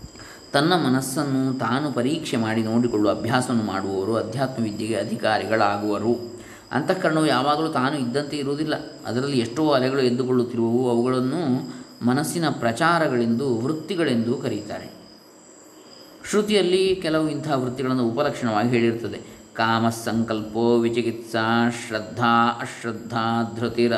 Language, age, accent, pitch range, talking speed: Kannada, 20-39, native, 115-125 Hz, 95 wpm